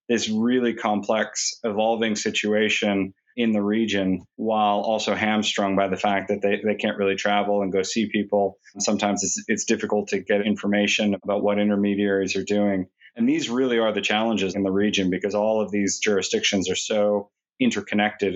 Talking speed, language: 175 wpm, English